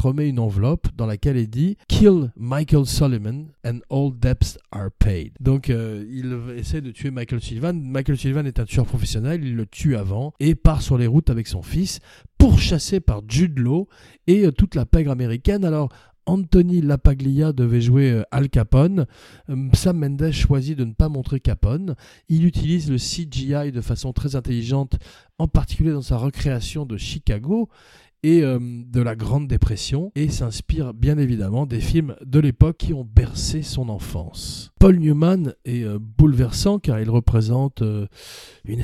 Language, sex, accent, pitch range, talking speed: French, male, French, 115-145 Hz, 170 wpm